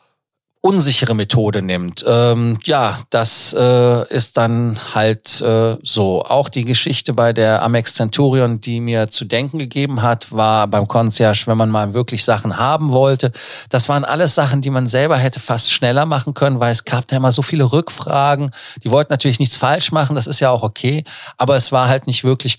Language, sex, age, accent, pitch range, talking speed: German, male, 40-59, German, 110-135 Hz, 190 wpm